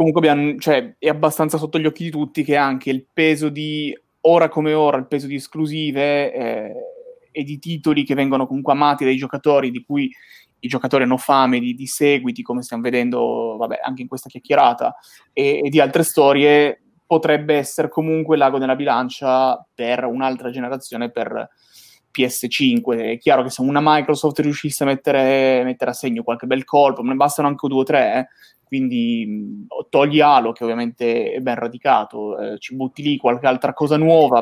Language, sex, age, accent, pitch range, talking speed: Italian, male, 20-39, native, 130-155 Hz, 180 wpm